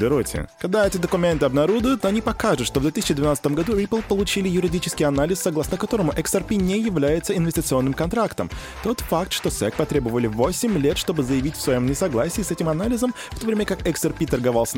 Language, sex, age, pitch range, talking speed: Russian, male, 20-39, 105-170 Hz, 170 wpm